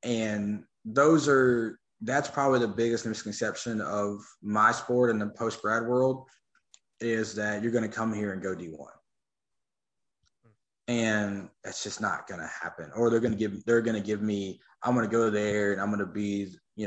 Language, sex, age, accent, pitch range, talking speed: English, male, 20-39, American, 100-125 Hz, 190 wpm